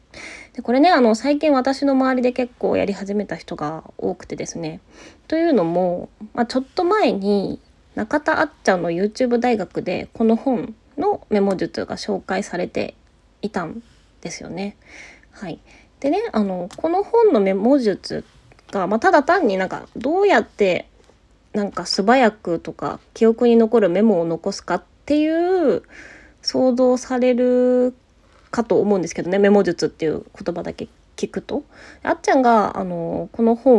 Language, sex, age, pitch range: Japanese, female, 20-39, 200-280 Hz